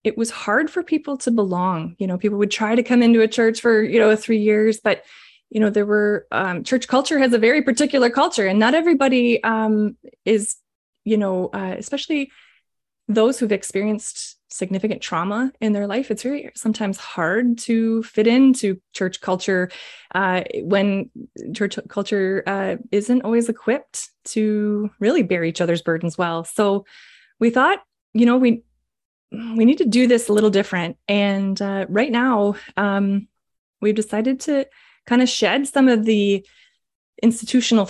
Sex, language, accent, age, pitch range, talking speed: female, English, American, 20-39, 200-245 Hz, 165 wpm